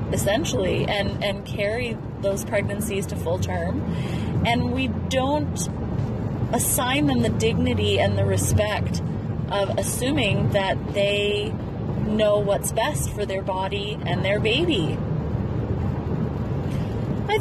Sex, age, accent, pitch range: female, 30-49, American, 110-135 Hz